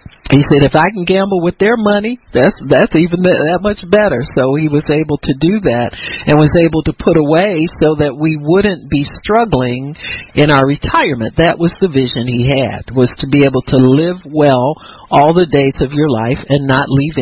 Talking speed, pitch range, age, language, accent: 205 wpm, 140-200 Hz, 50-69, English, American